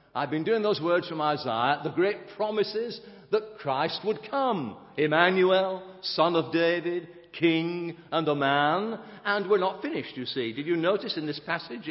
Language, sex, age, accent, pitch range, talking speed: English, male, 50-69, British, 145-195 Hz, 170 wpm